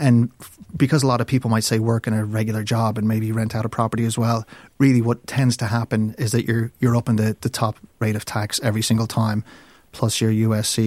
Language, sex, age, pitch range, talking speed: English, male, 30-49, 110-130 Hz, 245 wpm